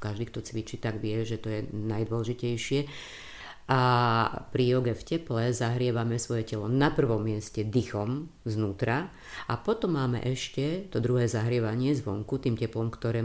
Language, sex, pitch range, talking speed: Slovak, female, 115-130 Hz, 150 wpm